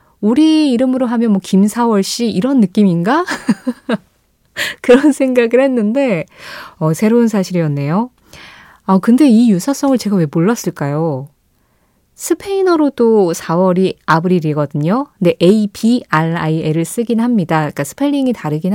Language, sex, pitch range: Korean, female, 165-235 Hz